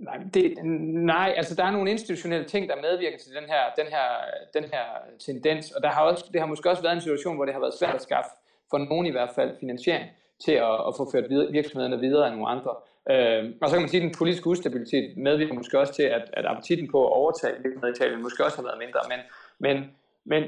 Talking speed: 245 wpm